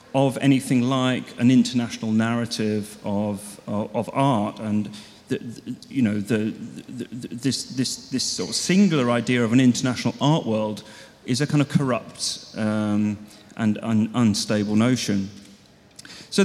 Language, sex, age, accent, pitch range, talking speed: English, male, 40-59, British, 115-135 Hz, 150 wpm